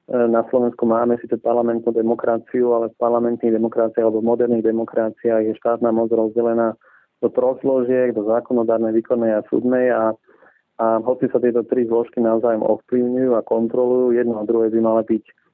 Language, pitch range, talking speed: Slovak, 115-120 Hz, 165 wpm